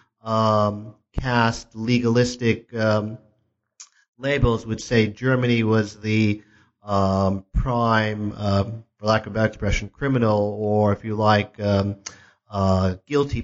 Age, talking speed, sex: 40-59, 105 wpm, male